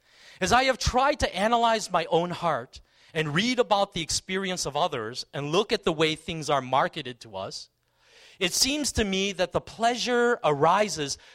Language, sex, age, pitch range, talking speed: English, male, 40-59, 150-225 Hz, 180 wpm